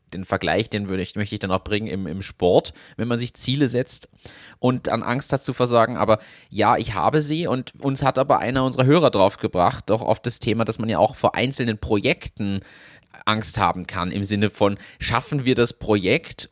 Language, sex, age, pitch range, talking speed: German, male, 30-49, 100-130 Hz, 215 wpm